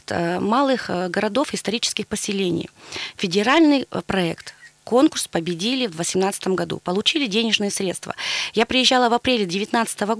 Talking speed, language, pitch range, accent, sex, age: 110 wpm, Russian, 190-250 Hz, native, female, 20-39